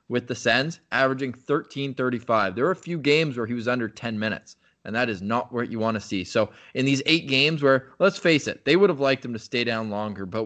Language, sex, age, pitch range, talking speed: English, male, 20-39, 110-130 Hz, 250 wpm